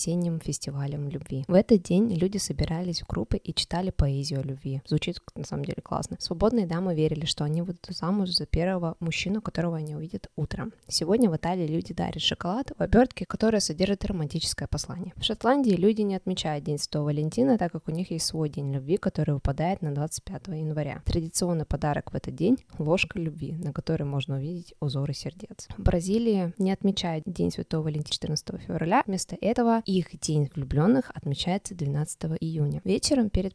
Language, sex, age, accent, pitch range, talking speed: Russian, female, 20-39, native, 150-190 Hz, 175 wpm